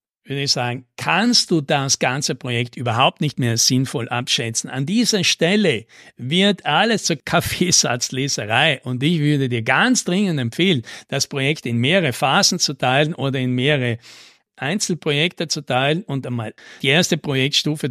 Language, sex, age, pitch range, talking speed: German, male, 60-79, 130-185 Hz, 150 wpm